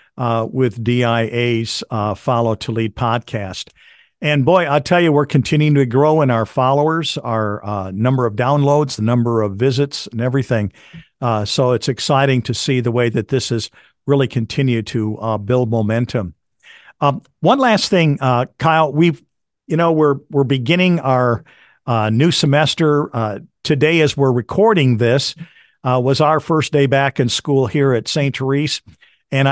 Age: 50-69